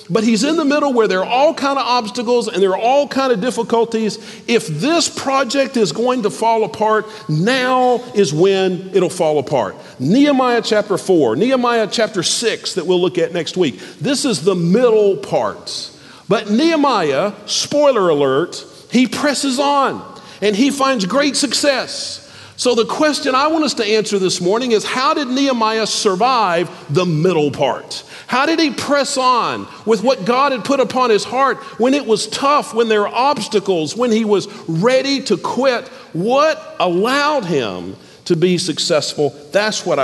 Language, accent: English, American